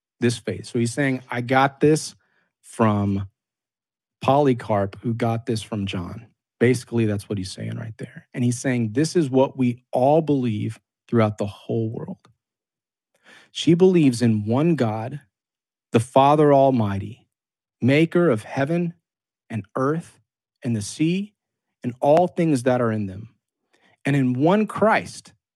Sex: male